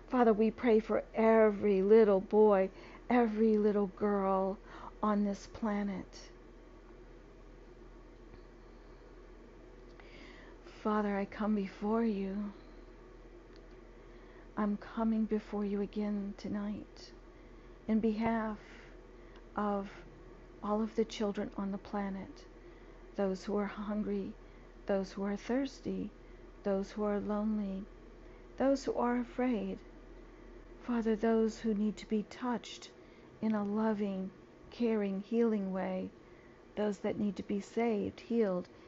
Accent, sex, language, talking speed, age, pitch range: American, female, English, 110 wpm, 50-69, 195-225 Hz